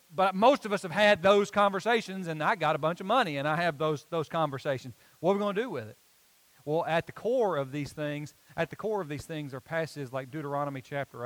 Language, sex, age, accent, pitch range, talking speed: English, male, 40-59, American, 155-220 Hz, 250 wpm